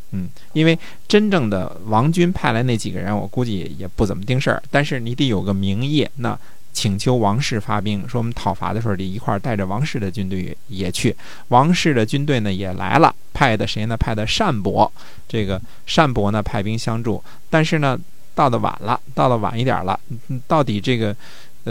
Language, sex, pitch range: Chinese, male, 100-130 Hz